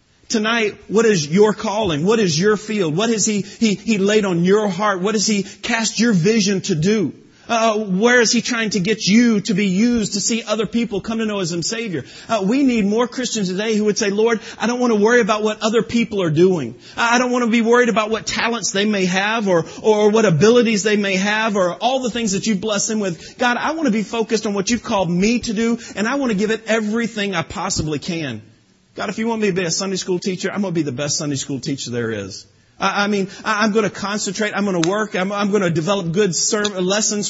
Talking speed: 255 wpm